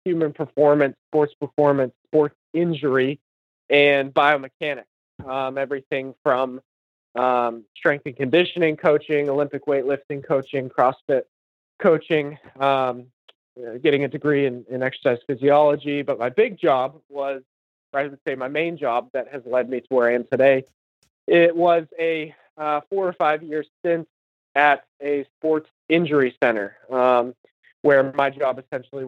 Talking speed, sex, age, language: 140 wpm, male, 20-39, English